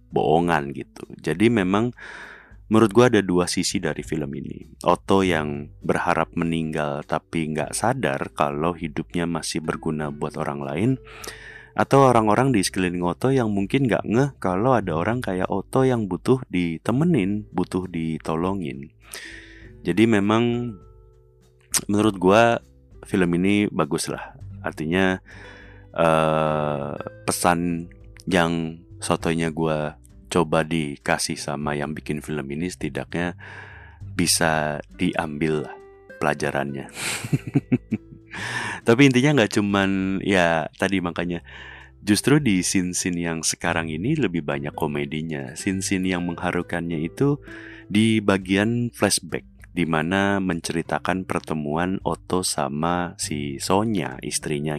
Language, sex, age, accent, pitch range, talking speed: Indonesian, male, 30-49, native, 80-105 Hz, 115 wpm